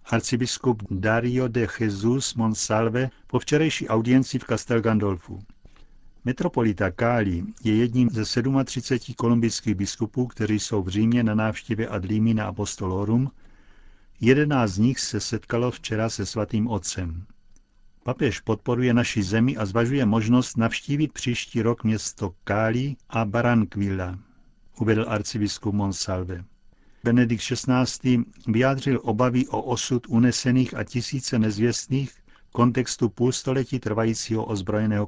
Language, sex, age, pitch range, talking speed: Czech, male, 50-69, 105-125 Hz, 115 wpm